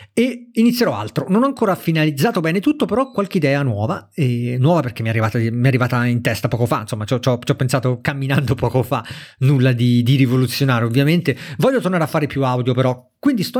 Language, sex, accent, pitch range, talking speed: Italian, male, native, 130-165 Hz, 210 wpm